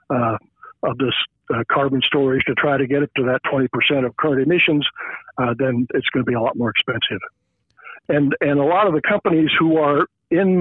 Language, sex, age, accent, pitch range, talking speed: English, male, 60-79, American, 130-155 Hz, 210 wpm